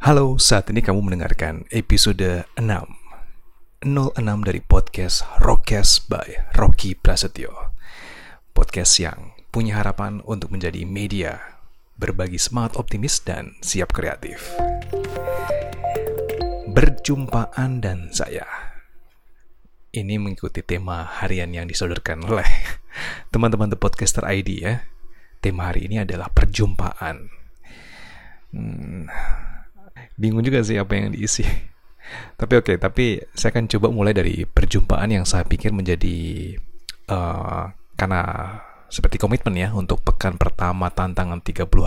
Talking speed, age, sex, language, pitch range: 110 wpm, 30-49, male, Indonesian, 90-110 Hz